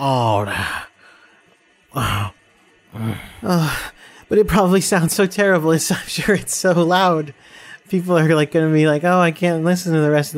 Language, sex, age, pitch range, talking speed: English, male, 30-49, 130-175 Hz, 175 wpm